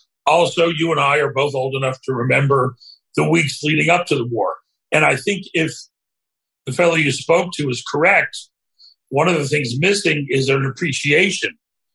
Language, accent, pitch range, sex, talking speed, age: English, American, 125-165 Hz, male, 180 wpm, 40-59